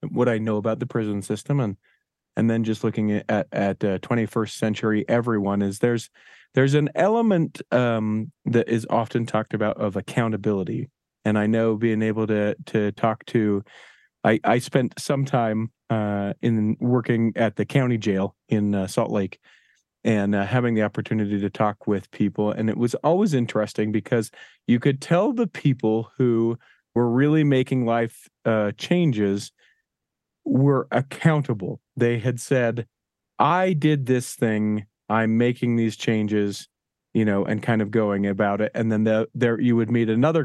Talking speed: 170 wpm